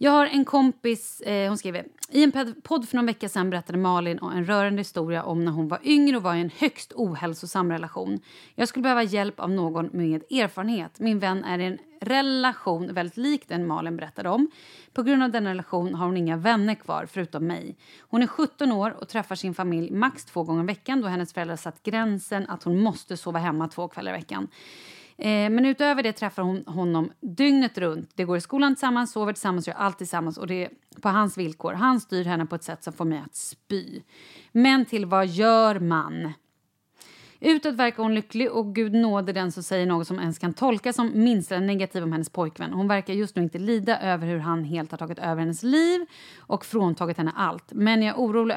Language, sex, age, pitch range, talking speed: Swedish, female, 30-49, 170-230 Hz, 215 wpm